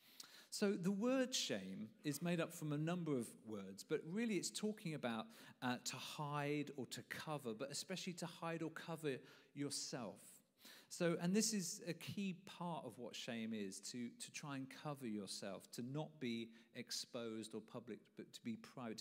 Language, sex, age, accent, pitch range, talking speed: English, male, 40-59, British, 120-185 Hz, 180 wpm